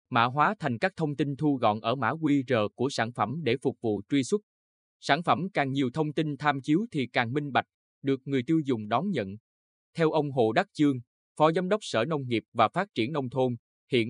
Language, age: Vietnamese, 20-39